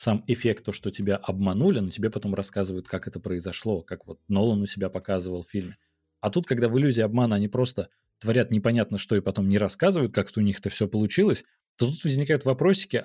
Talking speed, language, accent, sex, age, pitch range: 205 wpm, Russian, native, male, 30-49, 100-125 Hz